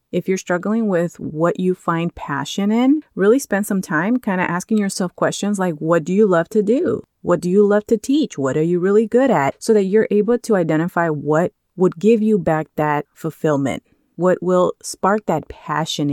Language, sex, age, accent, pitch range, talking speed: English, female, 30-49, American, 165-215 Hz, 205 wpm